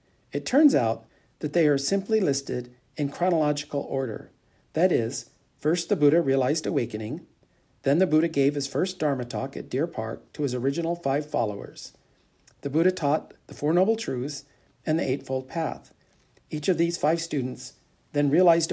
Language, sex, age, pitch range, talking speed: English, male, 50-69, 135-170 Hz, 165 wpm